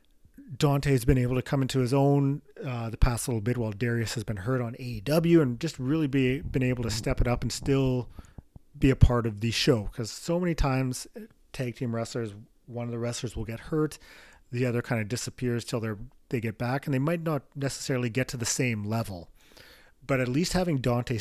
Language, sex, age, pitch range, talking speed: English, male, 40-59, 115-135 Hz, 220 wpm